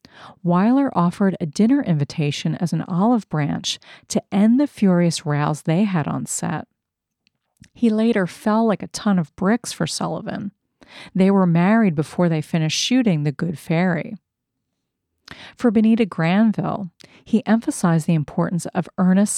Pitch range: 165-210 Hz